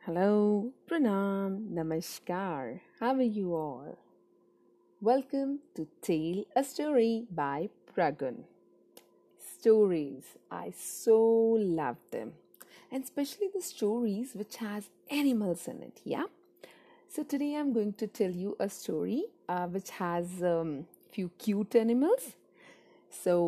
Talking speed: 120 wpm